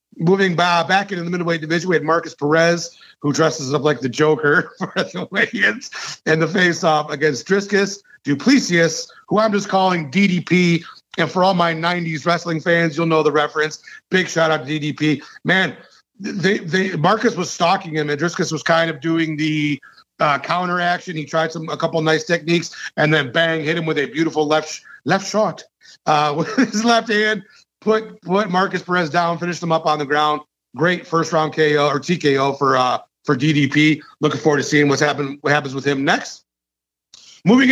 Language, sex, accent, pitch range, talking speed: English, male, American, 150-185 Hz, 195 wpm